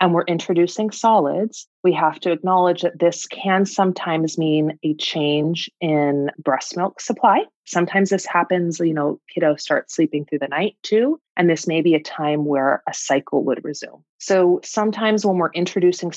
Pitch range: 150-190 Hz